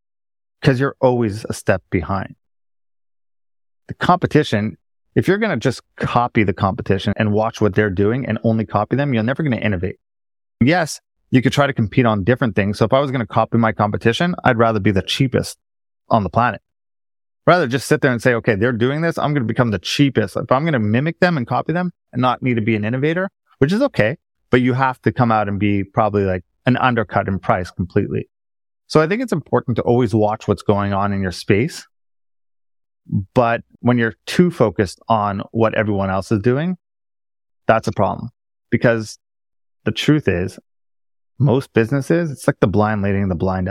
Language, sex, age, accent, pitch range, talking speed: English, male, 30-49, American, 100-125 Hz, 200 wpm